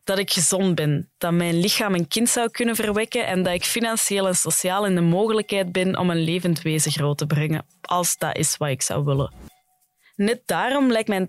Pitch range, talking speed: 165-215 Hz, 215 wpm